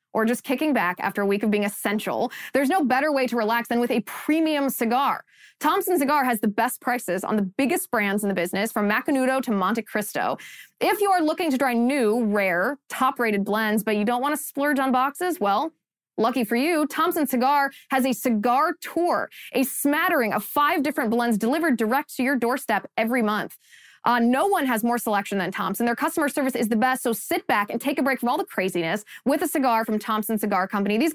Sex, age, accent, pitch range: female, 20-39, American, 210-285 Hz